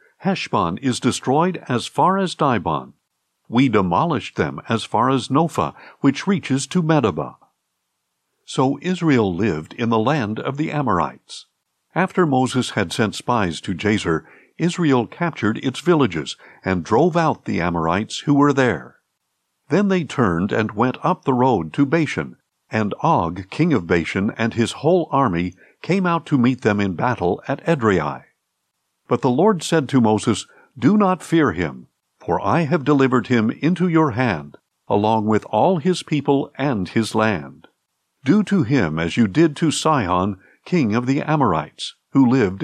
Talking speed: 160 wpm